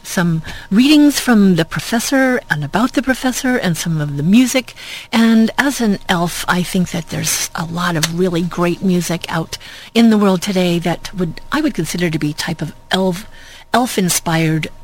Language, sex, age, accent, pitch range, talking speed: English, female, 50-69, American, 165-205 Hz, 180 wpm